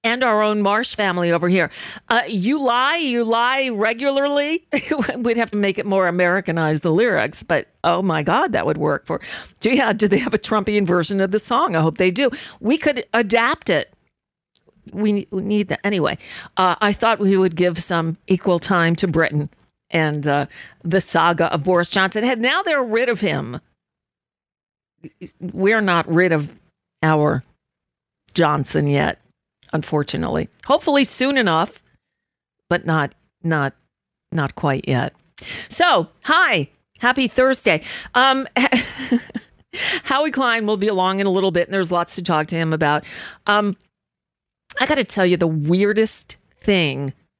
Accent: American